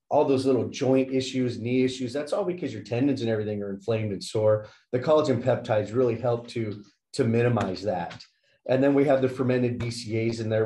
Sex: male